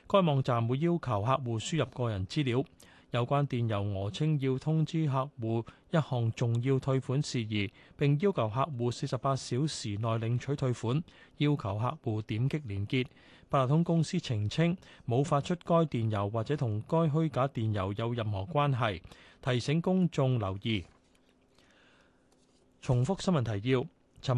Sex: male